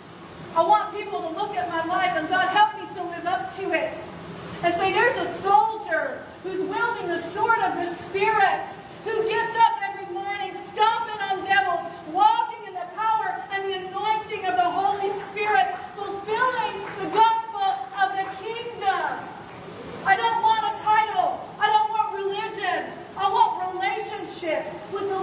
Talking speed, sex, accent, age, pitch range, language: 160 wpm, female, American, 40-59, 340-410 Hz, English